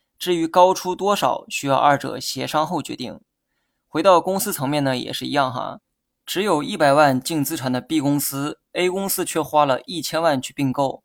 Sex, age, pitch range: male, 20-39, 135-170 Hz